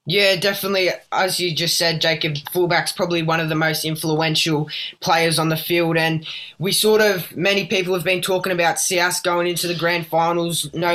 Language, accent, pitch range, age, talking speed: English, Australian, 165-180 Hz, 10-29, 190 wpm